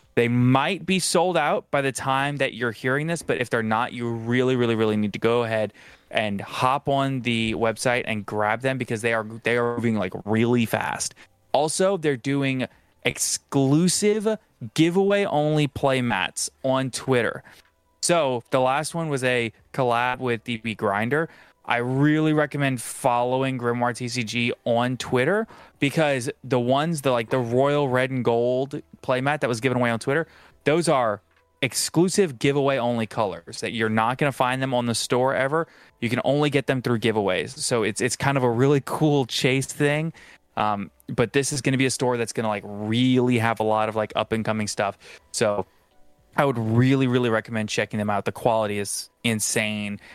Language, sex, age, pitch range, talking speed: English, male, 20-39, 110-135 Hz, 185 wpm